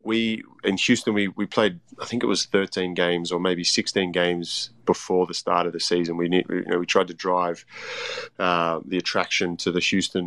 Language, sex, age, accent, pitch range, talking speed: English, male, 20-39, Australian, 85-95 Hz, 215 wpm